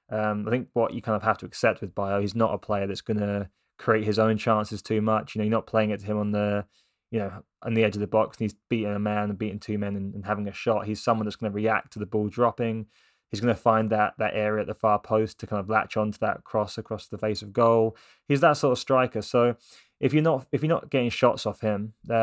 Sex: male